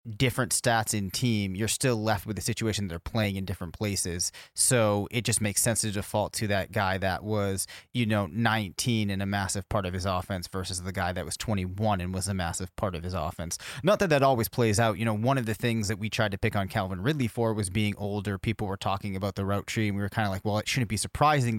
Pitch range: 100-125 Hz